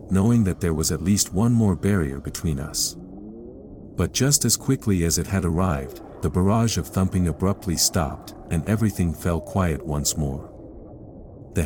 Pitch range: 80-110 Hz